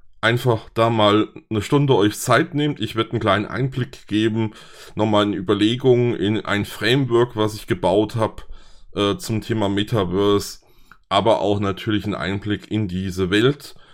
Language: German